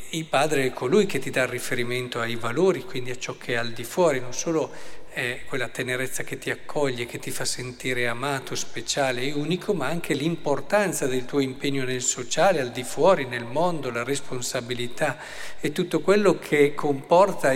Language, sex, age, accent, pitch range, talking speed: Italian, male, 50-69, native, 130-160 Hz, 180 wpm